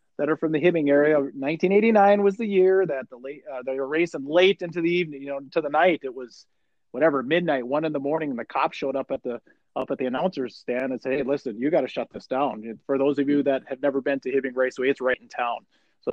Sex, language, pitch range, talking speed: male, English, 135-175 Hz, 270 wpm